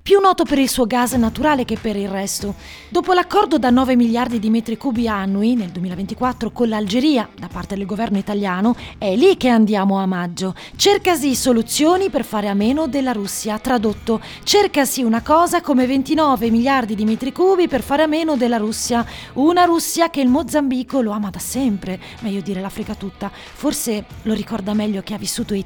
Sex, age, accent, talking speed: female, 30-49, native, 185 wpm